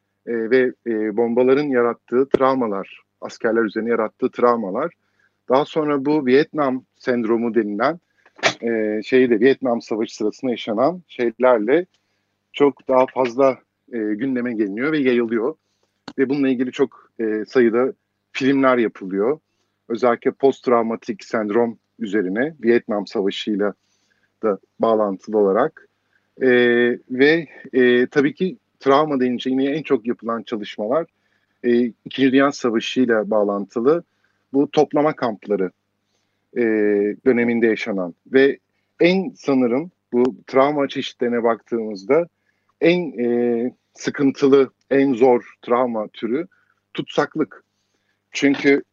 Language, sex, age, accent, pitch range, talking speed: Turkish, male, 50-69, native, 110-135 Hz, 105 wpm